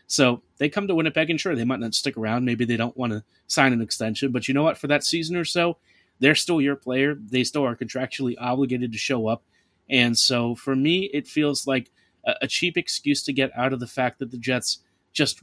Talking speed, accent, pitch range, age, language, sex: 235 wpm, American, 120-145 Hz, 30-49, English, male